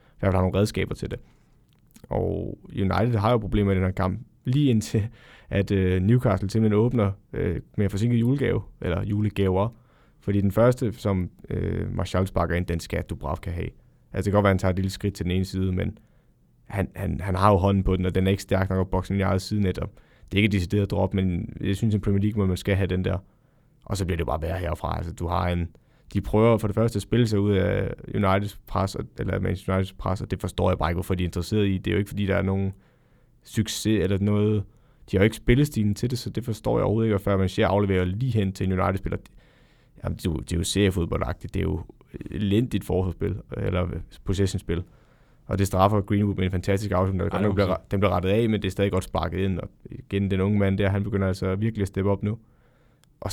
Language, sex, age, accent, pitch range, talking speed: Danish, male, 20-39, native, 95-105 Hz, 235 wpm